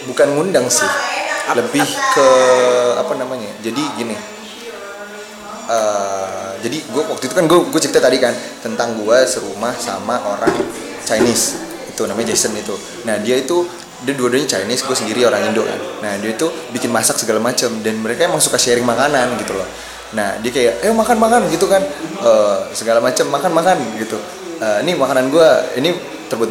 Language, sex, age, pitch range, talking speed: Indonesian, male, 20-39, 110-180 Hz, 170 wpm